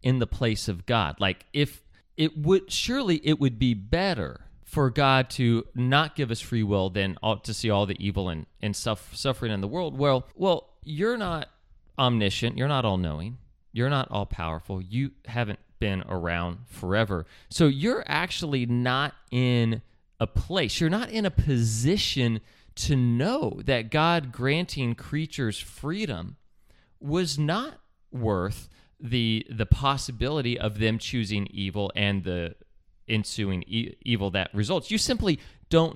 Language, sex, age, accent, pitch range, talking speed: English, male, 30-49, American, 100-150 Hz, 145 wpm